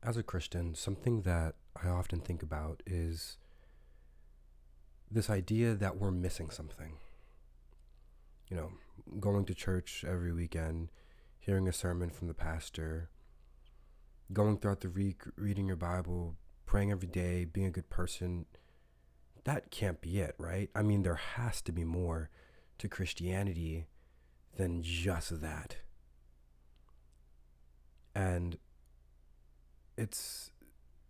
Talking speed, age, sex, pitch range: 120 wpm, 30-49, male, 65-95 Hz